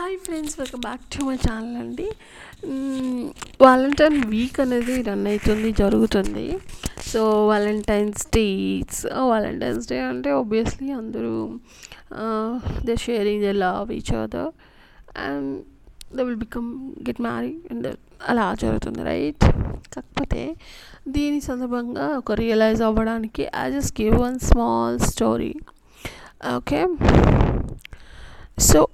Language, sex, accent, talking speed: Telugu, female, native, 110 wpm